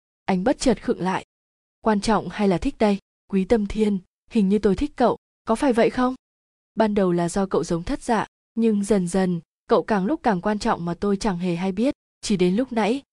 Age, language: 20-39, Vietnamese